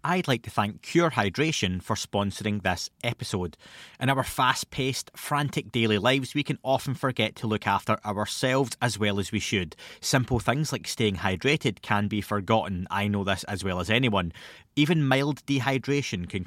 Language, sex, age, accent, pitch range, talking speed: English, male, 20-39, British, 100-135 Hz, 175 wpm